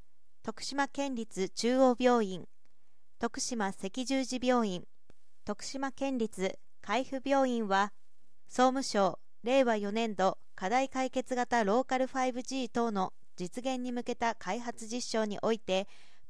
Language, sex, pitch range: Japanese, female, 210-260 Hz